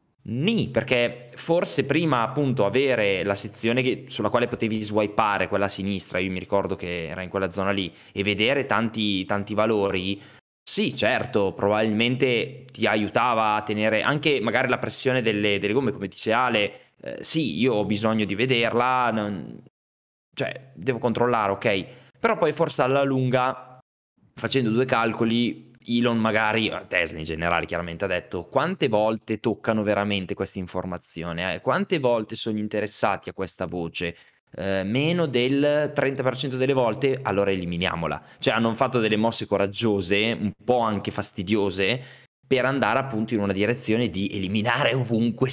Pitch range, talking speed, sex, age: 100-125 Hz, 150 wpm, male, 20-39